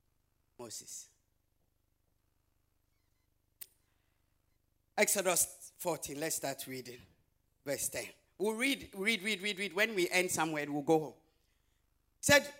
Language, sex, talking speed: English, male, 100 wpm